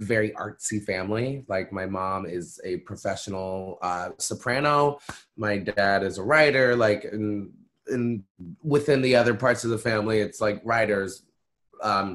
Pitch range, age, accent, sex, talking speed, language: 100-120 Hz, 20-39, American, male, 150 wpm, English